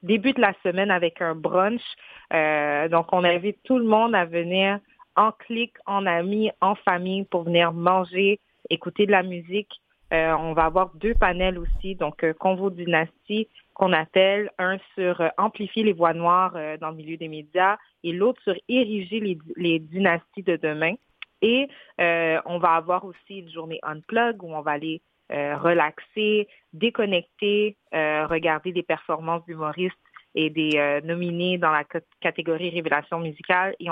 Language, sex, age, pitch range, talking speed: French, female, 30-49, 160-190 Hz, 170 wpm